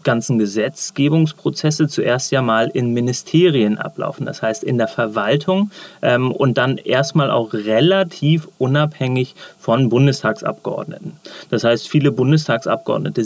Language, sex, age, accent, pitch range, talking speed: German, male, 30-49, German, 110-140 Hz, 120 wpm